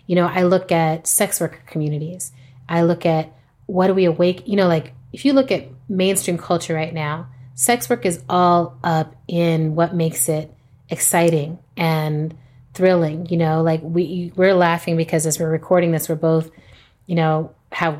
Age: 30-49